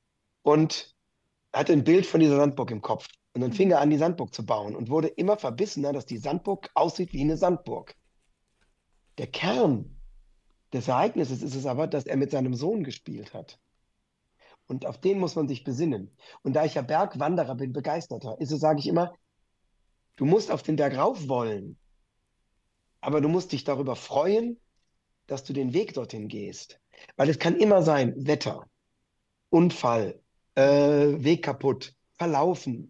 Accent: German